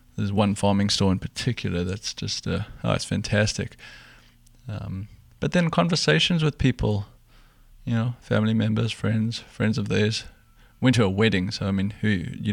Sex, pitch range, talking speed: male, 100-115 Hz, 170 wpm